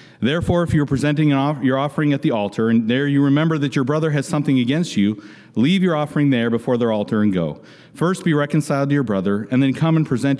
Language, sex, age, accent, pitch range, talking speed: English, male, 40-59, American, 120-155 Hz, 230 wpm